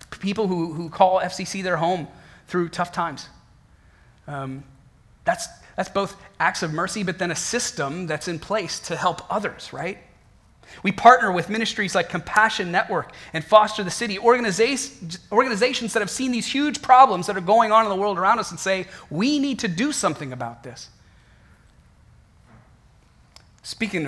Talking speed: 160 wpm